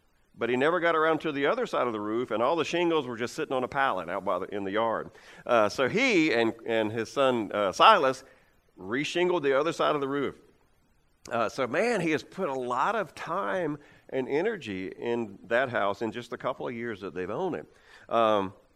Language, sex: English, male